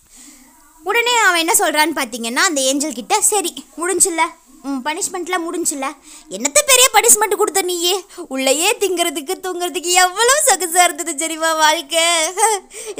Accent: native